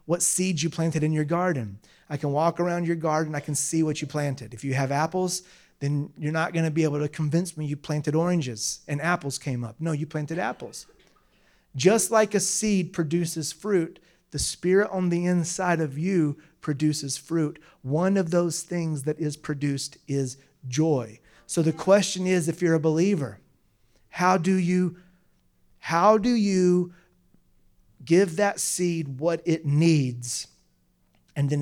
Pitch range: 145-175 Hz